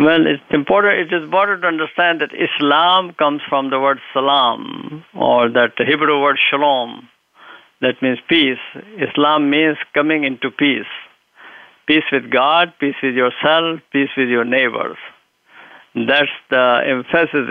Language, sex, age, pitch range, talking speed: English, male, 50-69, 135-165 Hz, 135 wpm